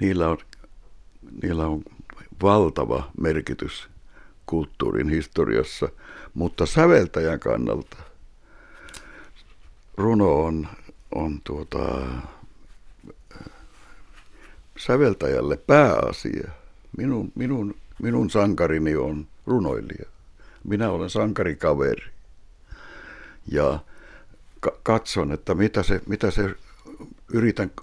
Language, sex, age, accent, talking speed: Finnish, male, 60-79, native, 75 wpm